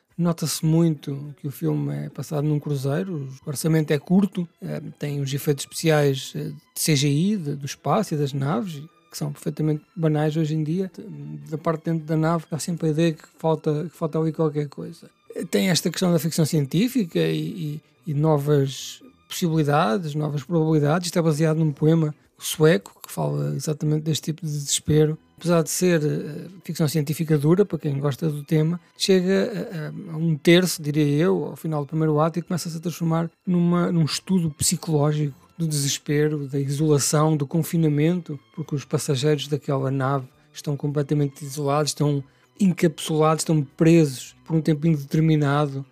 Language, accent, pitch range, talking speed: Portuguese, Portuguese, 145-165 Hz, 160 wpm